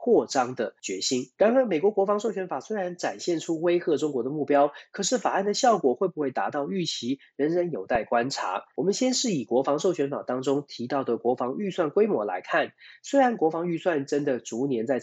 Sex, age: male, 30-49